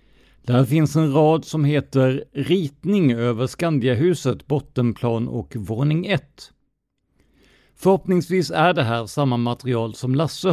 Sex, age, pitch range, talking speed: male, 50-69, 115-155 Hz, 120 wpm